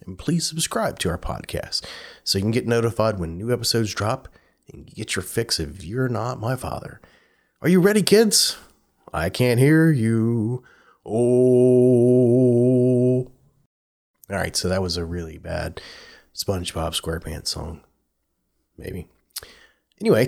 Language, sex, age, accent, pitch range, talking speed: English, male, 30-49, American, 90-130 Hz, 135 wpm